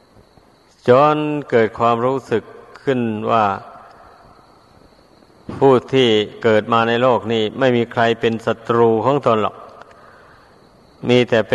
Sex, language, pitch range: male, Thai, 115-125 Hz